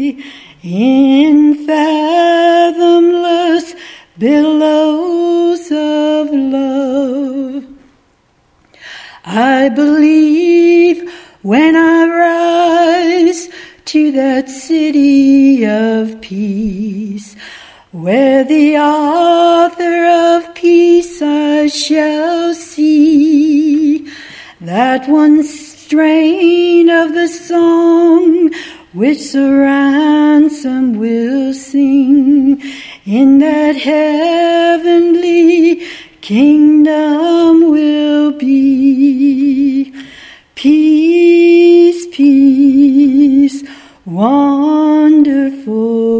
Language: English